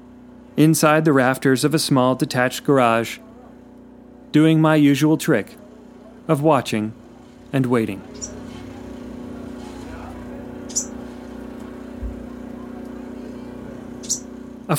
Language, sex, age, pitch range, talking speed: English, male, 40-59, 125-180 Hz, 70 wpm